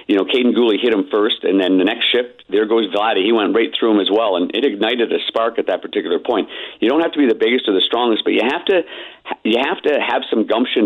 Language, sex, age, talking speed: English, male, 50-69, 280 wpm